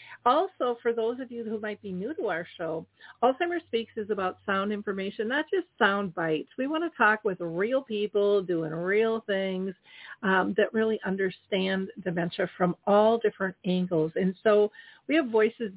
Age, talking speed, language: 50-69, 175 wpm, English